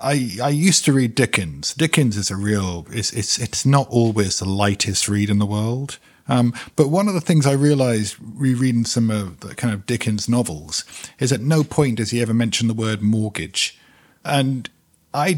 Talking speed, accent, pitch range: 195 wpm, British, 105-135 Hz